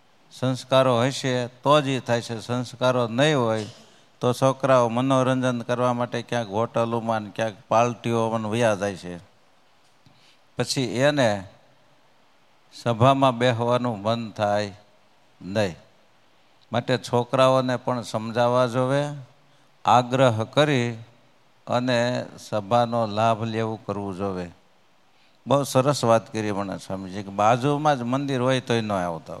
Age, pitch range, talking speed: 60-79, 115-135 Hz, 115 wpm